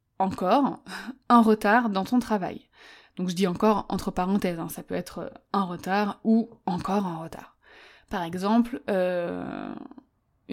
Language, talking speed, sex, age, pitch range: French, 140 wpm, female, 20-39, 190-230 Hz